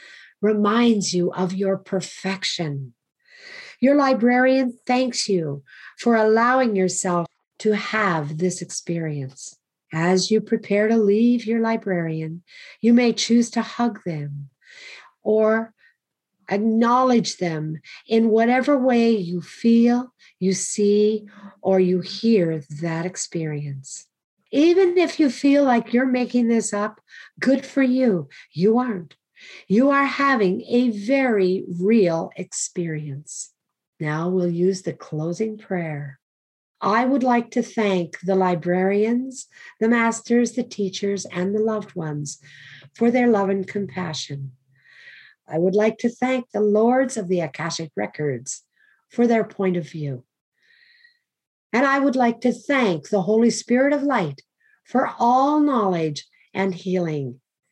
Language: English